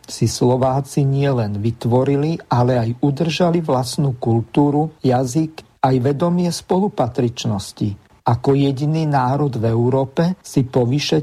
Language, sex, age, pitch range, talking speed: Slovak, male, 50-69, 125-155 Hz, 110 wpm